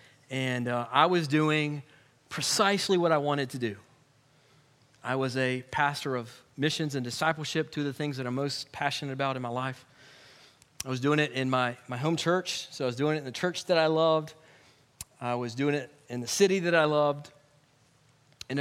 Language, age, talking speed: English, 40-59, 200 wpm